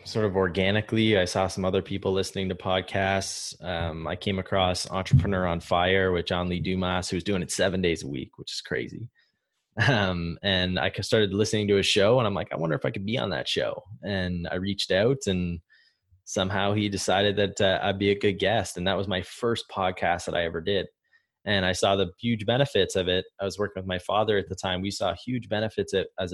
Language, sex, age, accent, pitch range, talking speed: English, male, 20-39, American, 90-105 Hz, 225 wpm